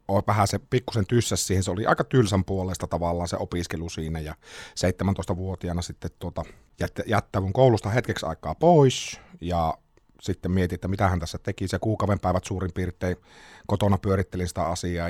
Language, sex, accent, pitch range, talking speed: Finnish, male, native, 85-100 Hz, 165 wpm